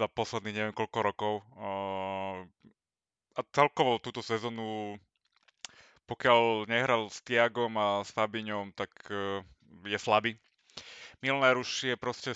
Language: Slovak